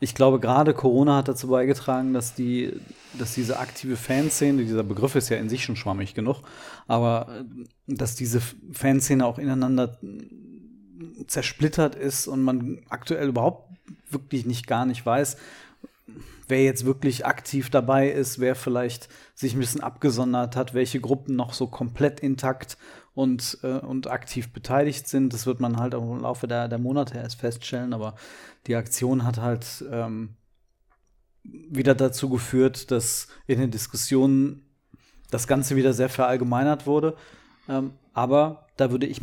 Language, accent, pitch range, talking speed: German, German, 120-135 Hz, 150 wpm